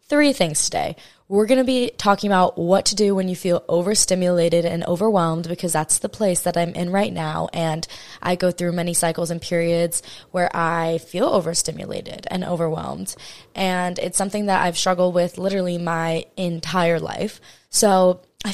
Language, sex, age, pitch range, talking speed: English, female, 20-39, 170-200 Hz, 175 wpm